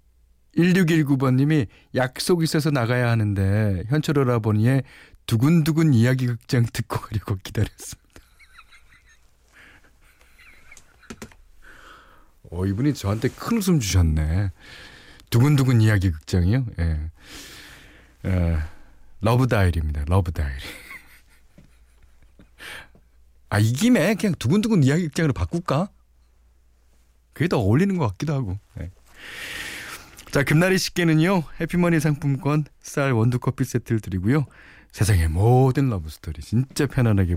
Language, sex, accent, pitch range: Korean, male, native, 90-145 Hz